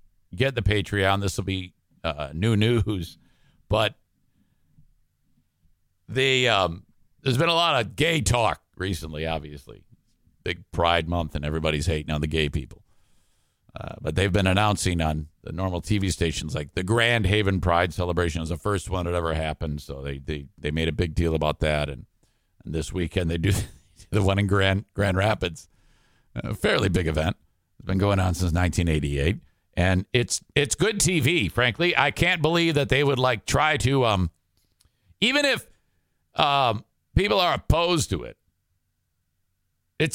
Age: 50-69